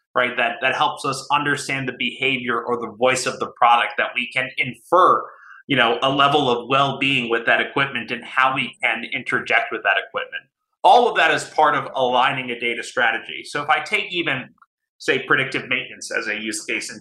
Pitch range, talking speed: 125-155 Hz, 205 wpm